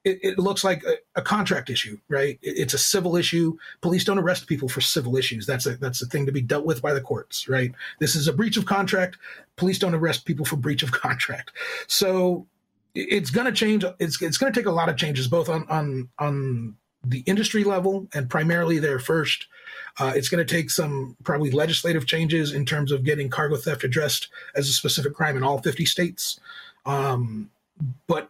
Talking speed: 205 wpm